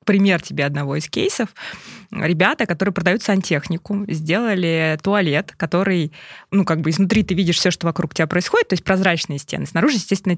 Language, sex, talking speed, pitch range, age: Russian, female, 170 wpm, 170-215 Hz, 20-39